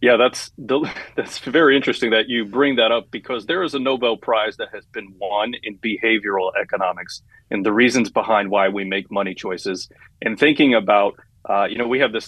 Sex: male